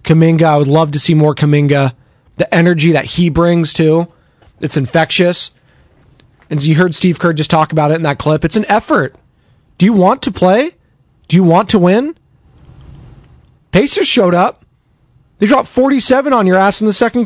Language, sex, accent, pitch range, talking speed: English, male, American, 140-195 Hz, 185 wpm